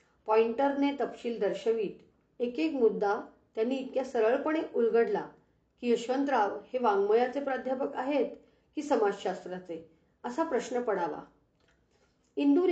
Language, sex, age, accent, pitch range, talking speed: Hindi, female, 40-59, native, 205-270 Hz, 75 wpm